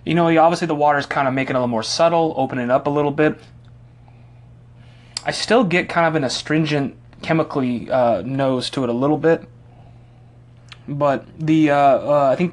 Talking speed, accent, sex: 195 wpm, American, male